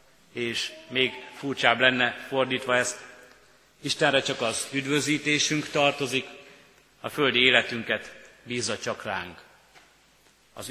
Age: 30-49